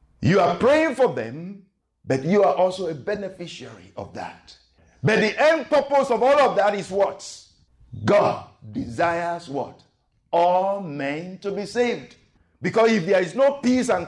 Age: 50-69